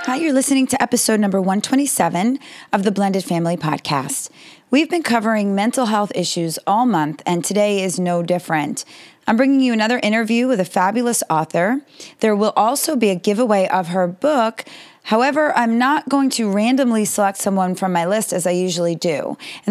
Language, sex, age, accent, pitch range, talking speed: English, female, 30-49, American, 185-245 Hz, 180 wpm